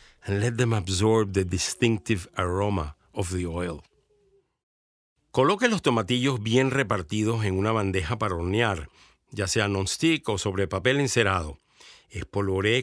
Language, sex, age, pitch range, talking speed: English, male, 50-69, 105-140 Hz, 130 wpm